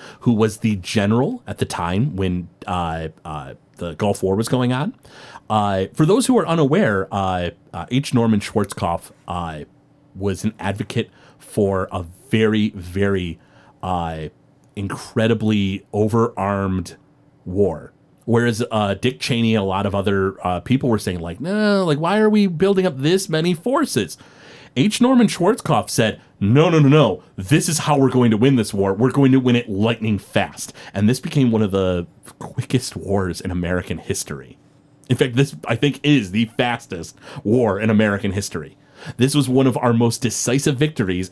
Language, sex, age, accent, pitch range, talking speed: English, male, 30-49, American, 95-135 Hz, 175 wpm